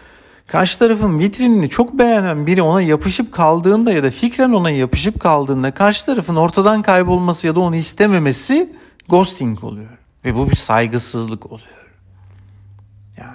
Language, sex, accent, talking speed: Turkish, male, native, 140 wpm